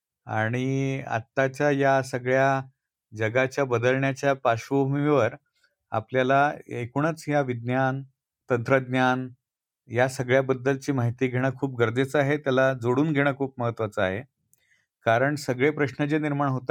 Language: Marathi